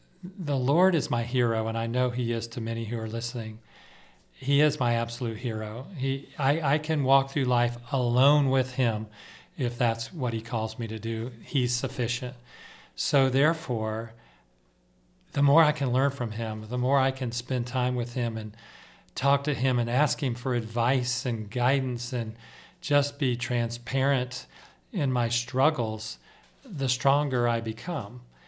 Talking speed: 165 wpm